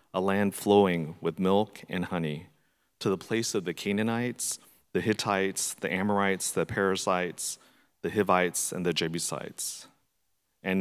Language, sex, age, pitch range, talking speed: English, male, 40-59, 90-110 Hz, 140 wpm